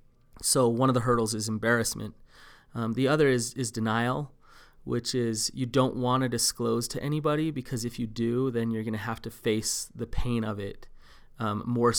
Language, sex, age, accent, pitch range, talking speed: English, male, 30-49, American, 110-125 Hz, 195 wpm